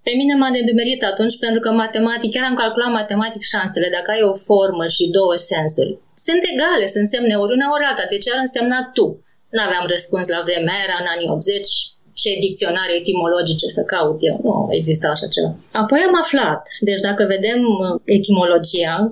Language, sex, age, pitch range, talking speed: Romanian, female, 20-39, 195-250 Hz, 175 wpm